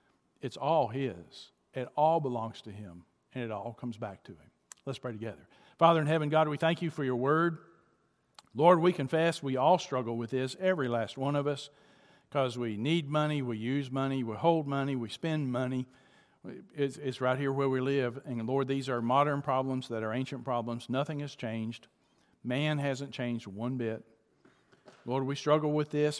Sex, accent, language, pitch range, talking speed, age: male, American, English, 120-145 Hz, 190 wpm, 50-69